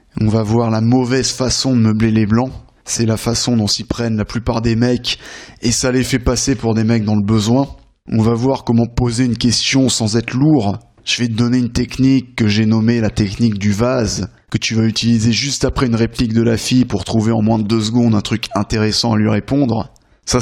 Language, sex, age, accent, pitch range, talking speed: French, male, 20-39, French, 110-125 Hz, 230 wpm